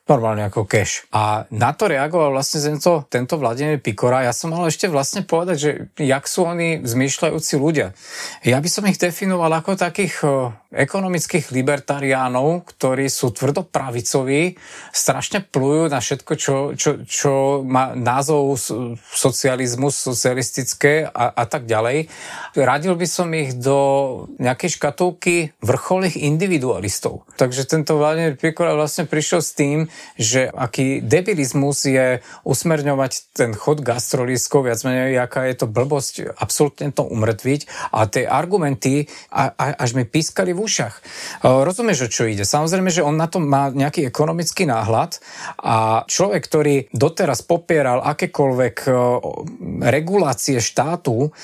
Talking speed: 130 wpm